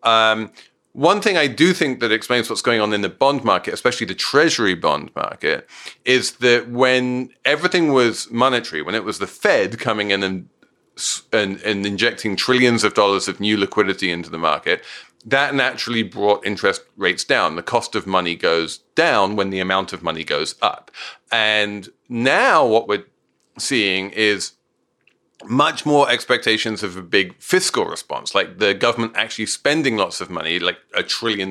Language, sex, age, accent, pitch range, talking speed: English, male, 40-59, British, 95-120 Hz, 170 wpm